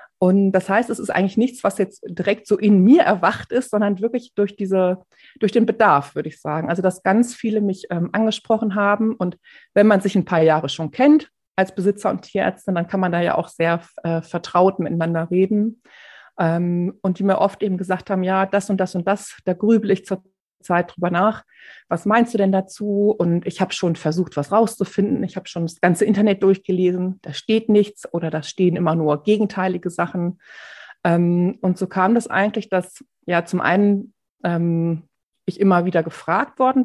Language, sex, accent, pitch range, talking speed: German, female, German, 175-215 Hz, 200 wpm